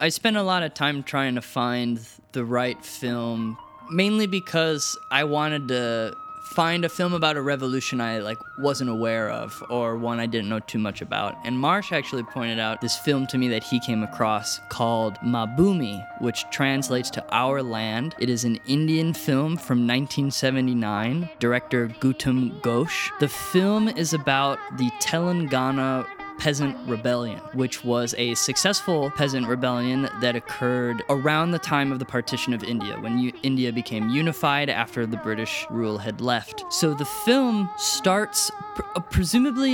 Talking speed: 160 wpm